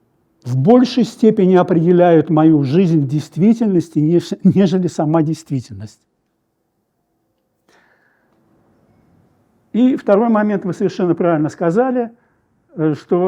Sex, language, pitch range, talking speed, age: male, Russian, 150-190 Hz, 85 wpm, 60-79